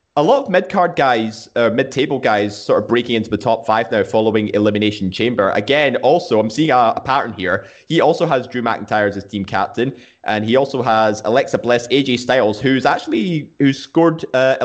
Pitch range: 110-135 Hz